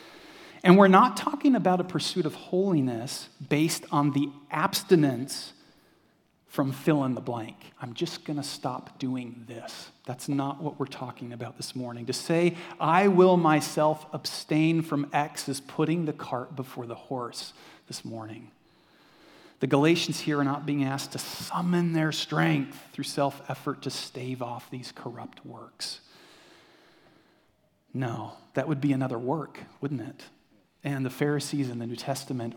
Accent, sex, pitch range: American, male, 125-155 Hz